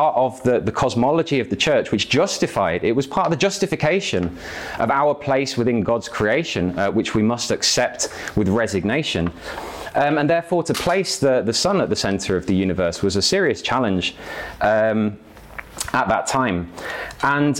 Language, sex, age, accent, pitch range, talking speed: English, male, 30-49, British, 95-130 Hz, 175 wpm